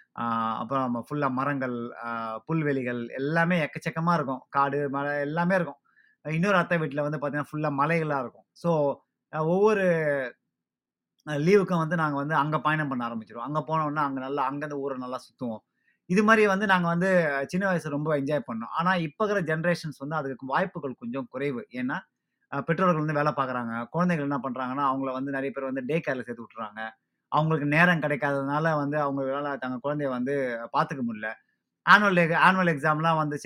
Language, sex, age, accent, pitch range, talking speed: Tamil, male, 30-49, native, 135-165 Hz, 155 wpm